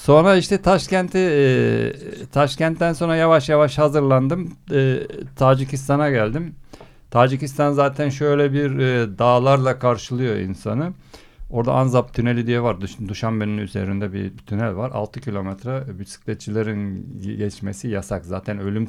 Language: Turkish